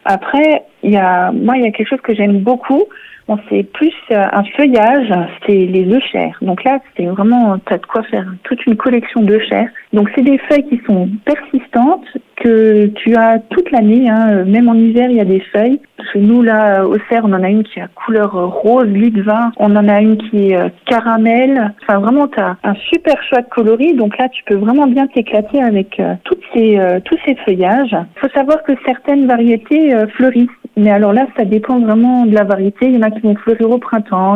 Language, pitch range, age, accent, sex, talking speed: French, 200-245 Hz, 50-69, French, female, 220 wpm